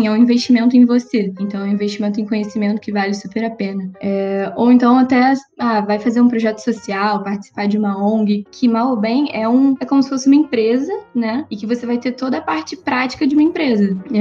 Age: 10-29